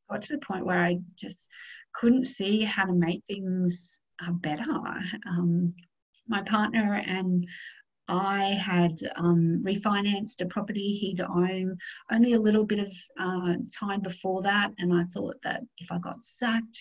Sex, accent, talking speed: female, Australian, 155 wpm